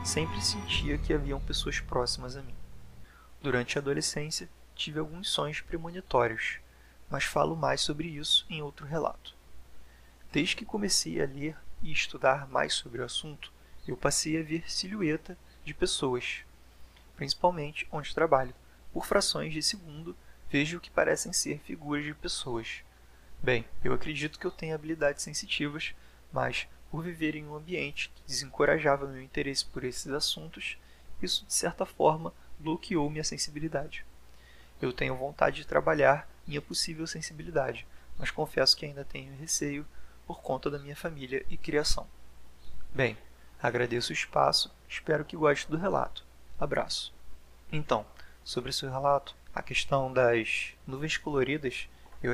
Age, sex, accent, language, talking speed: 20-39, male, Brazilian, Portuguese, 145 wpm